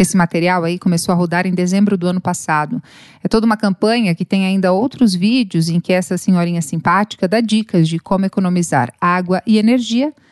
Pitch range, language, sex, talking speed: 180-225 Hz, Portuguese, female, 190 wpm